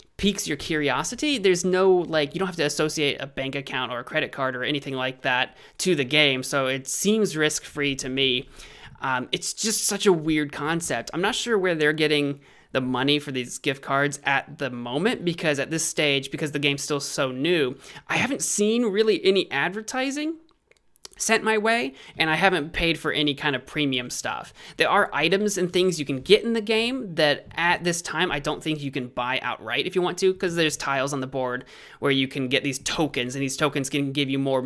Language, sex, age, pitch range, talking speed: English, male, 30-49, 135-180 Hz, 220 wpm